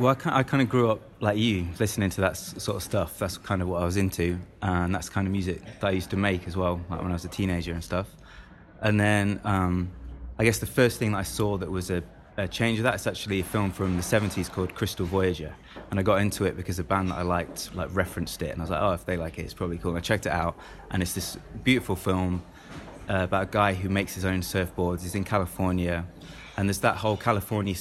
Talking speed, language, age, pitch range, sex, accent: 265 wpm, English, 20-39, 90-105 Hz, male, British